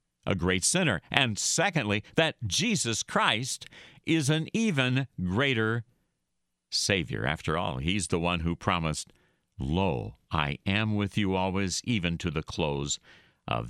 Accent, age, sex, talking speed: American, 60-79, male, 135 wpm